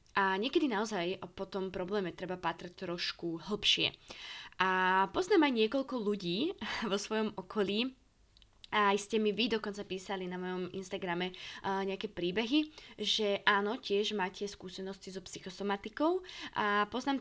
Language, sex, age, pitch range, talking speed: Slovak, female, 20-39, 180-215 Hz, 135 wpm